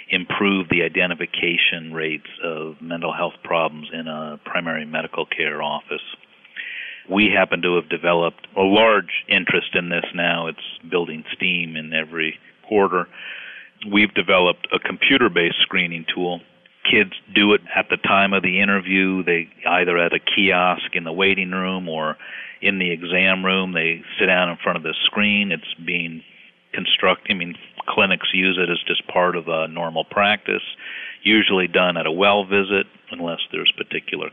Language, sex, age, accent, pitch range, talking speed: English, male, 50-69, American, 85-95 Hz, 160 wpm